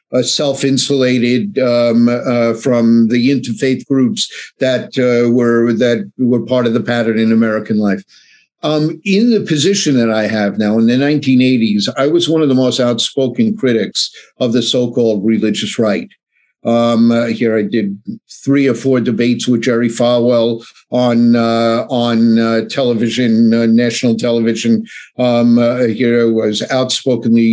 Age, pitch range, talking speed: 50-69, 115-140 Hz, 155 wpm